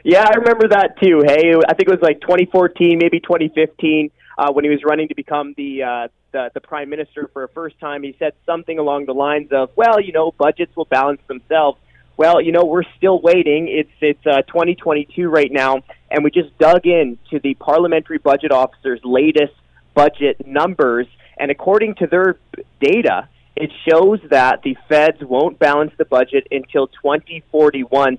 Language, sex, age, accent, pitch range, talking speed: English, male, 20-39, American, 145-180 Hz, 180 wpm